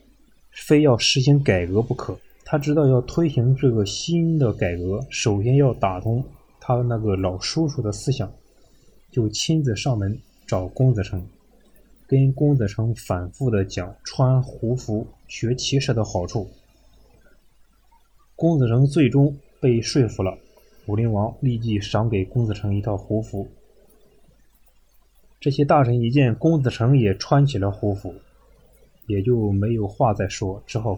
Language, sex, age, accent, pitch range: Chinese, male, 20-39, native, 105-135 Hz